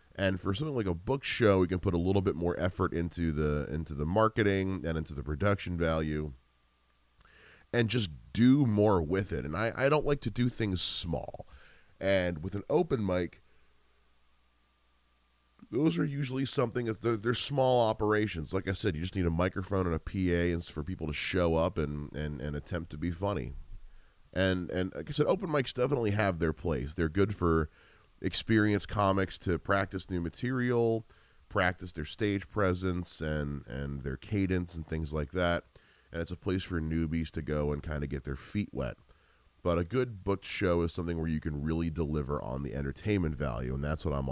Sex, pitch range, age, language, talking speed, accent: male, 75-100 Hz, 30-49, English, 195 wpm, American